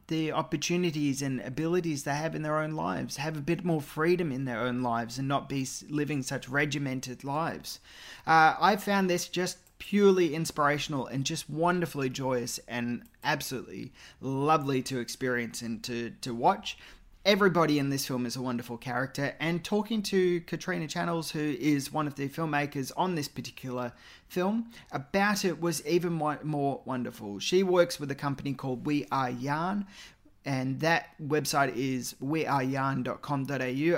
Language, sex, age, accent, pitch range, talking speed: English, male, 30-49, Australian, 130-165 Hz, 155 wpm